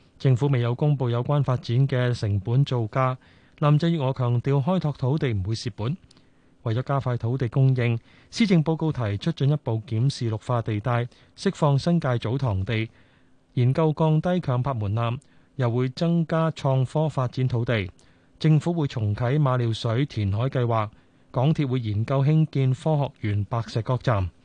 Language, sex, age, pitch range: Chinese, male, 20-39, 120-150 Hz